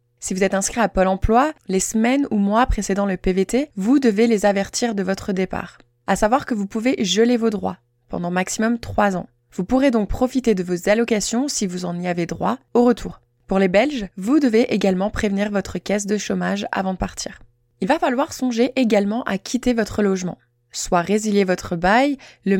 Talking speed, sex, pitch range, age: 200 wpm, female, 190-235 Hz, 20-39